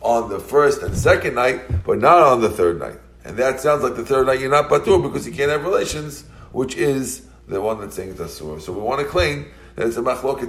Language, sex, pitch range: English, male, 85-140 Hz